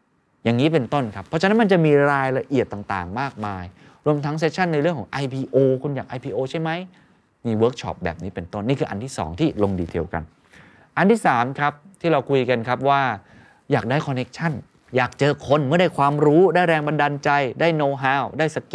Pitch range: 105-155 Hz